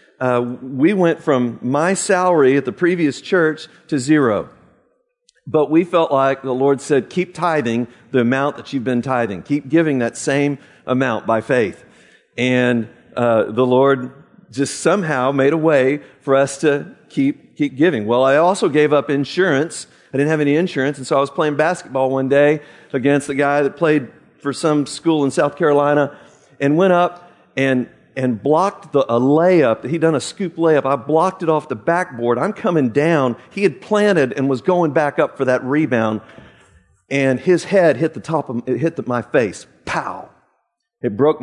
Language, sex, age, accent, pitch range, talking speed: English, male, 50-69, American, 125-160 Hz, 190 wpm